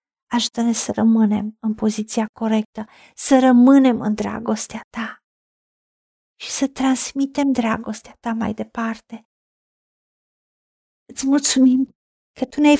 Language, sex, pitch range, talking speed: Romanian, female, 230-270 Hz, 110 wpm